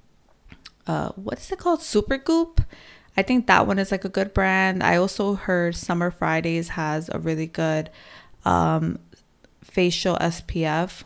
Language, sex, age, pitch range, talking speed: English, female, 20-39, 160-195 Hz, 145 wpm